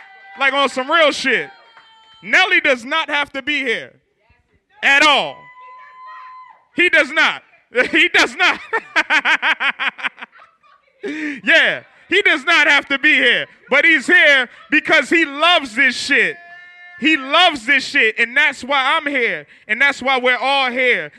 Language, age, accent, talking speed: English, 20-39, American, 145 wpm